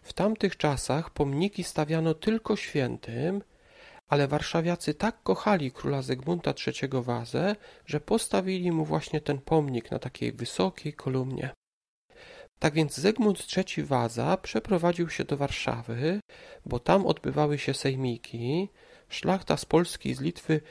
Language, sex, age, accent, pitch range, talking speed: Polish, male, 40-59, native, 135-180 Hz, 130 wpm